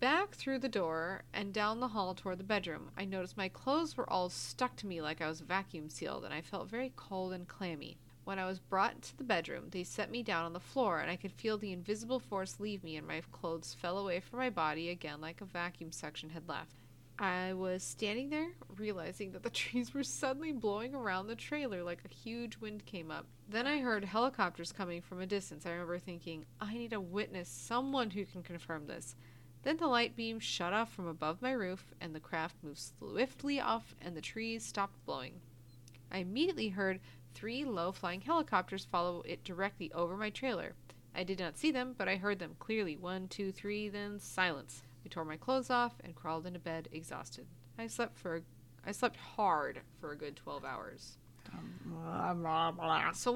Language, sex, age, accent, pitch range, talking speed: English, female, 30-49, American, 165-225 Hz, 200 wpm